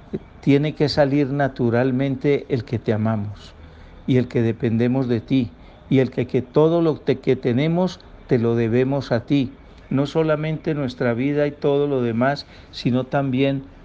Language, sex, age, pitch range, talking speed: Spanish, male, 60-79, 110-135 Hz, 160 wpm